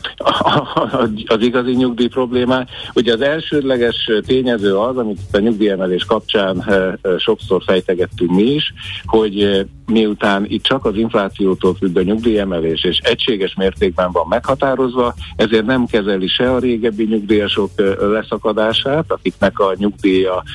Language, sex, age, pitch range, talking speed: Hungarian, male, 60-79, 95-120 Hz, 125 wpm